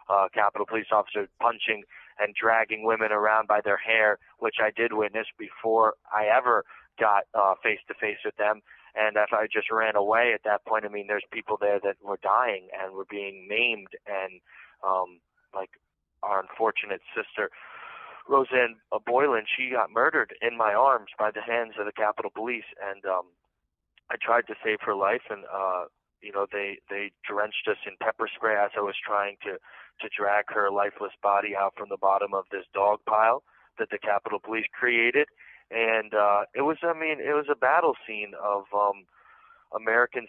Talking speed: 185 wpm